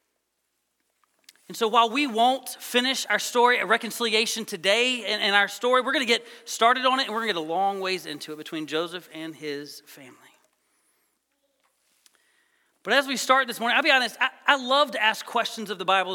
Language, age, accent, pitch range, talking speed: English, 40-59, American, 185-265 Hz, 200 wpm